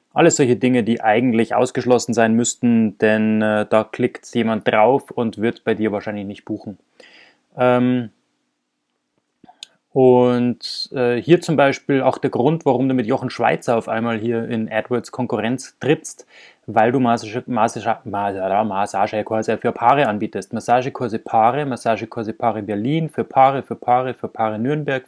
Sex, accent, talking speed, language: male, German, 150 wpm, German